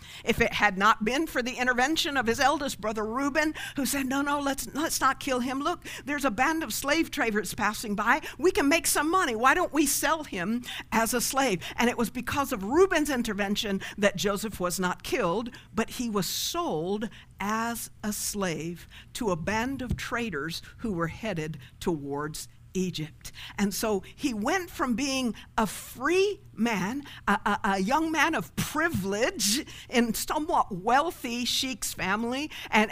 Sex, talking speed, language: female, 175 wpm, English